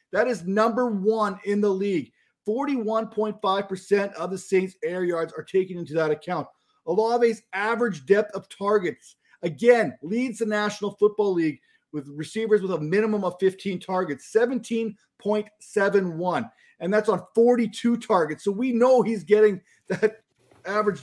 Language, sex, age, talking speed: English, male, 40-59, 145 wpm